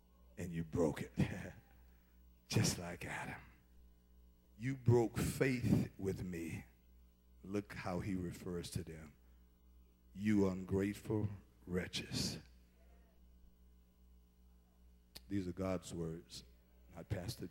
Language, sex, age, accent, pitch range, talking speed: English, male, 50-69, American, 80-120 Hz, 95 wpm